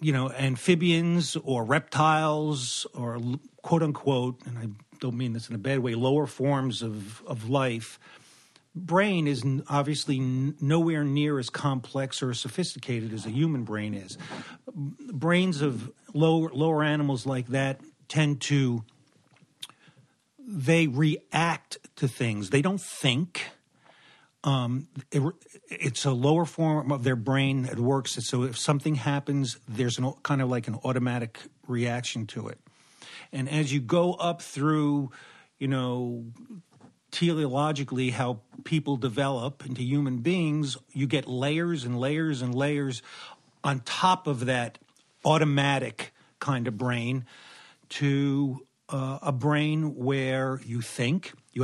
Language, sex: English, male